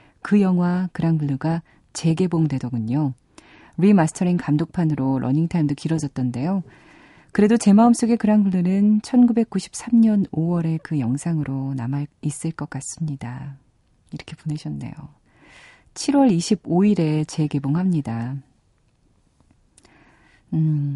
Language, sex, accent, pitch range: Korean, female, native, 140-175 Hz